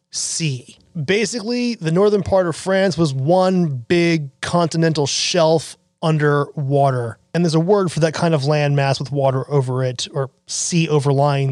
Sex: male